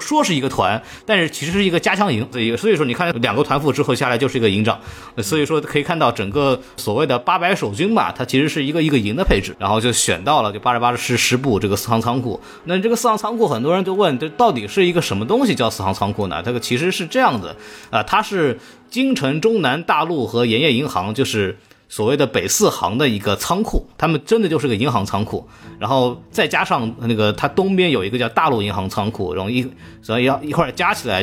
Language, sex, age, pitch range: Chinese, male, 20-39, 105-145 Hz